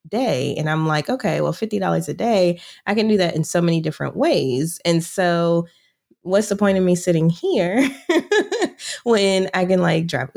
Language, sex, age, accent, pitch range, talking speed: English, female, 20-39, American, 160-210 Hz, 185 wpm